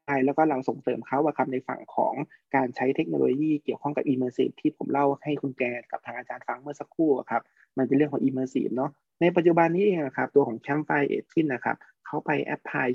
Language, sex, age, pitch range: Thai, male, 20-39, 130-155 Hz